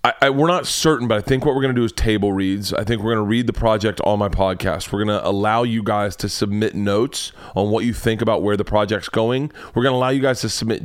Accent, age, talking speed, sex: American, 30-49, 295 wpm, male